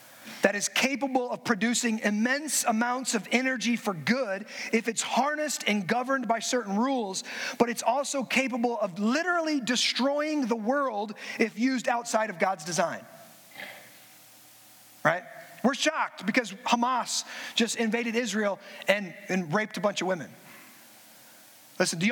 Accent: American